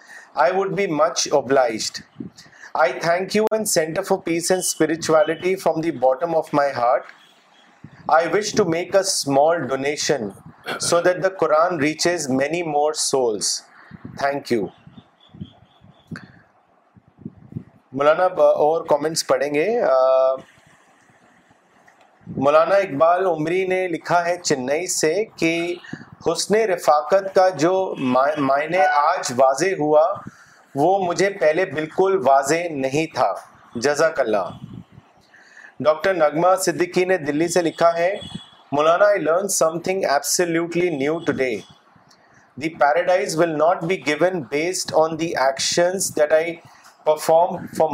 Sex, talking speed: male, 125 wpm